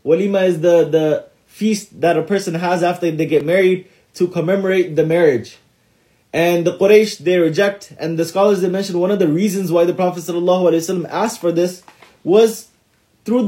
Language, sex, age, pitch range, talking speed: English, male, 20-39, 160-205 Hz, 185 wpm